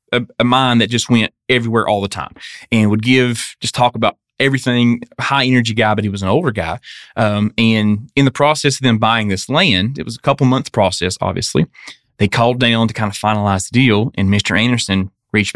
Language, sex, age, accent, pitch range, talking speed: English, male, 20-39, American, 100-120 Hz, 215 wpm